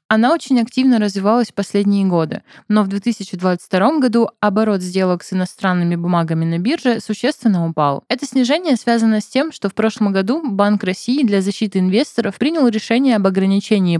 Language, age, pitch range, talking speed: Russian, 20-39, 185-230 Hz, 165 wpm